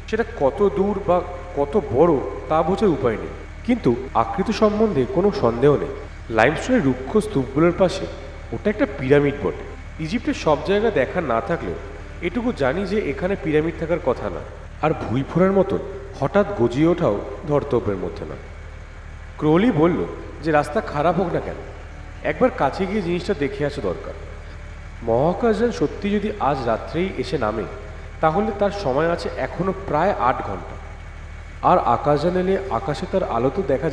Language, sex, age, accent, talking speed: Bengali, male, 40-59, native, 150 wpm